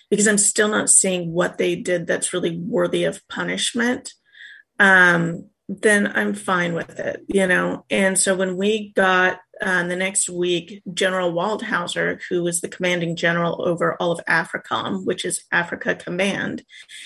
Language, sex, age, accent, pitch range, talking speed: English, female, 30-49, American, 180-210 Hz, 160 wpm